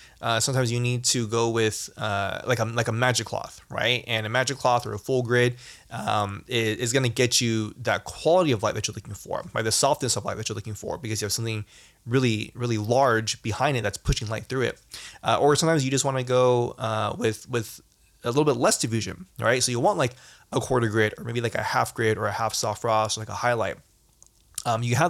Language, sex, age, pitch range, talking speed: English, male, 20-39, 110-140 Hz, 250 wpm